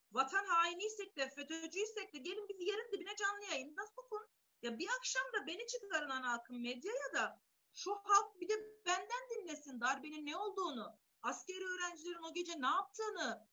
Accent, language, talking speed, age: native, Turkish, 170 wpm, 40-59